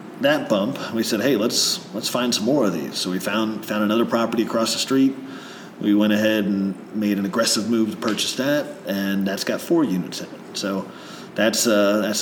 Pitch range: 100-125 Hz